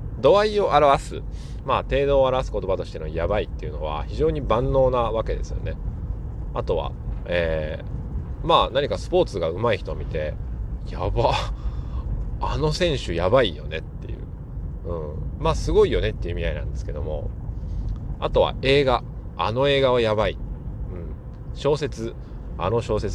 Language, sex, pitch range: Japanese, male, 100-145 Hz